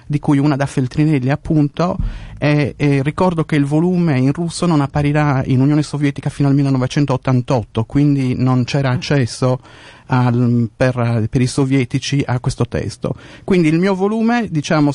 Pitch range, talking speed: 130-165 Hz, 155 wpm